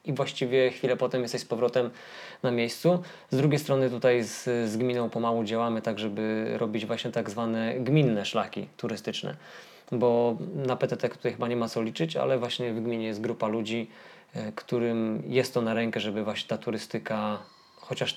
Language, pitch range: Polish, 115-130 Hz